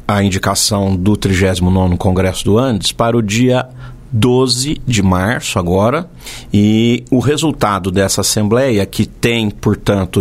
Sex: male